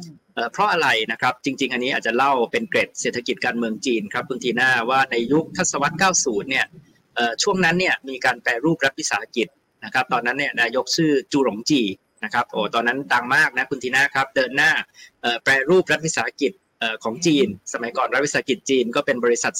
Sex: male